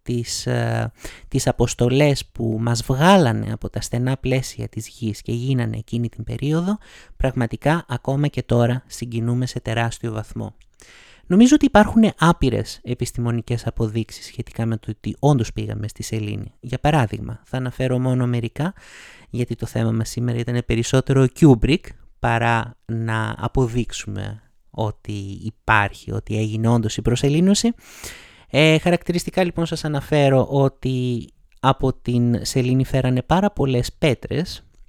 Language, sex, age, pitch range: Greek, male, 30-49, 115-145 Hz